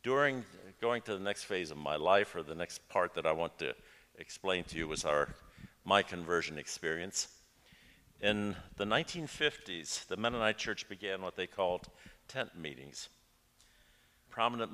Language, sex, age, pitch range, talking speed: English, male, 60-79, 85-120 Hz, 155 wpm